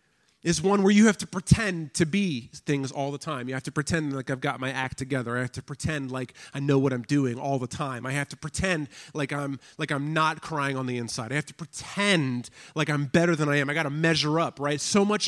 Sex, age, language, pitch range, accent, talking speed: male, 30-49, English, 145-185 Hz, American, 265 wpm